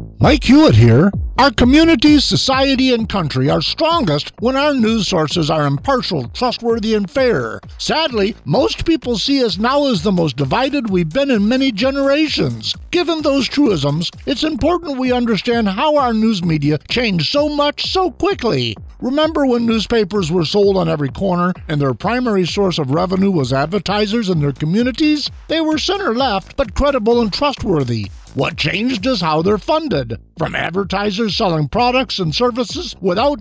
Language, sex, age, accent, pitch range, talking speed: English, male, 50-69, American, 165-270 Hz, 160 wpm